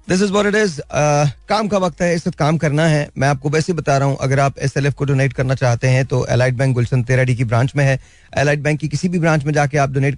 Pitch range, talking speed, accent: 135-155 Hz, 295 wpm, native